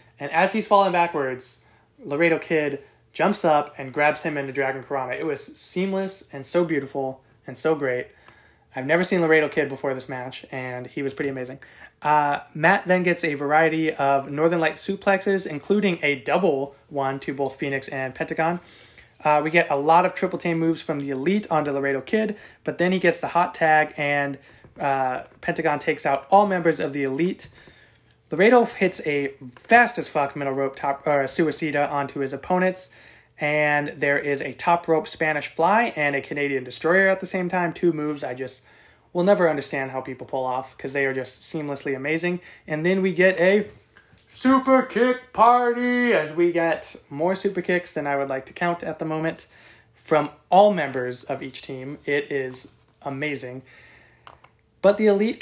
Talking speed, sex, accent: 185 wpm, male, American